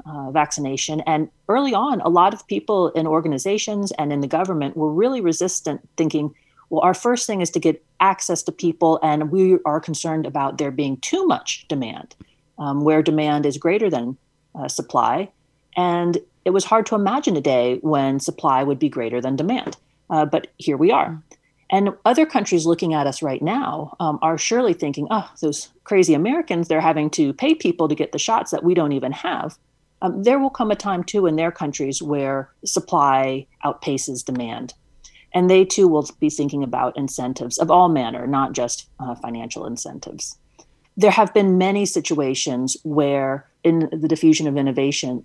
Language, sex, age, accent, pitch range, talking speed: English, female, 40-59, American, 145-185 Hz, 185 wpm